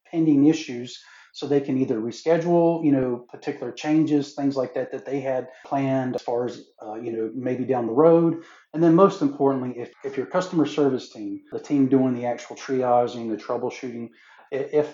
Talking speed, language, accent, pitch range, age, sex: 190 wpm, German, American, 120-140 Hz, 40-59, male